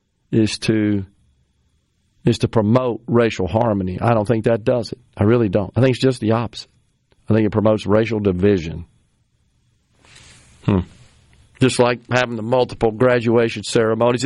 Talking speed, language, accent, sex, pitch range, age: 150 wpm, English, American, male, 100-125 Hz, 50-69